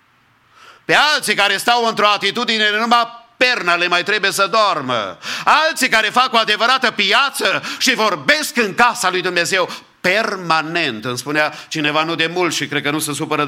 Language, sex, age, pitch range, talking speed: English, male, 50-69, 150-215 Hz, 175 wpm